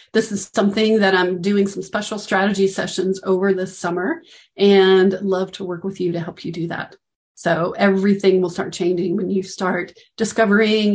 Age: 40-59